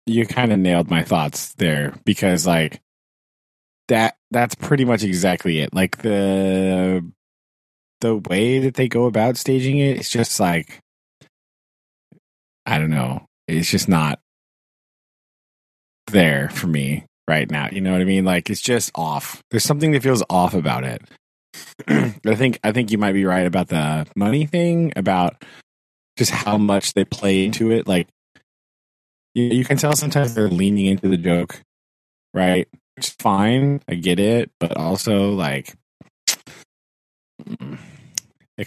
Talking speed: 145 wpm